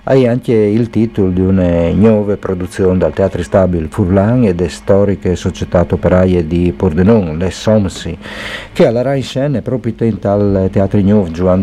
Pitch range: 90-110 Hz